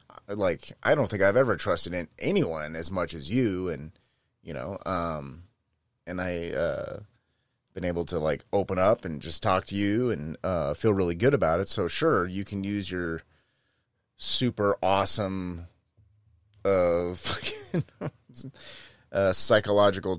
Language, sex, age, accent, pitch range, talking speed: English, male, 30-49, American, 90-120 Hz, 150 wpm